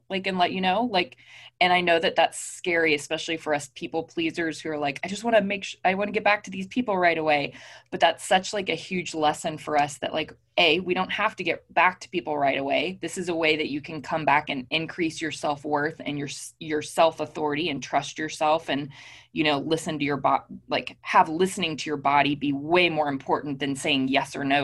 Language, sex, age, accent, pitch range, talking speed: English, female, 20-39, American, 145-180 Hz, 245 wpm